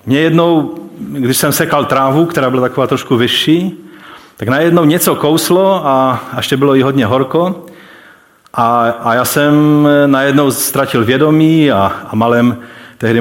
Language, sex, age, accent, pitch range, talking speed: Czech, male, 40-59, native, 115-150 Hz, 145 wpm